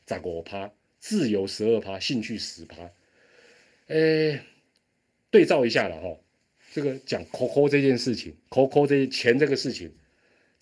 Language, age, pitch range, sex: Chinese, 30-49, 105-155 Hz, male